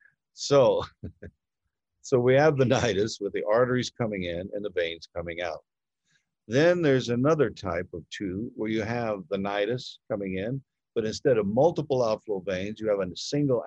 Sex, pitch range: male, 100-130 Hz